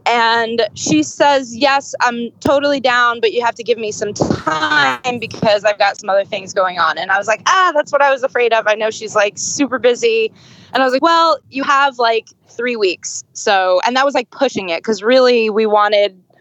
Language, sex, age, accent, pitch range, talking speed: English, female, 20-39, American, 210-275 Hz, 225 wpm